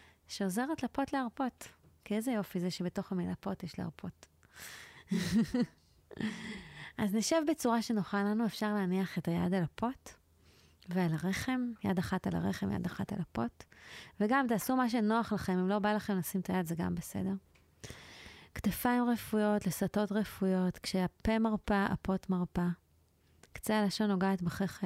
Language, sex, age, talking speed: Hebrew, female, 30-49, 145 wpm